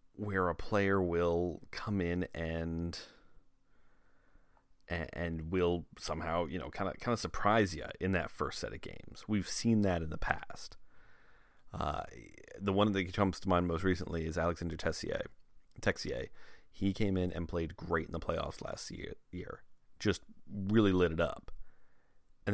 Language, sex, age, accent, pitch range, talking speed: English, male, 30-49, American, 85-105 Hz, 165 wpm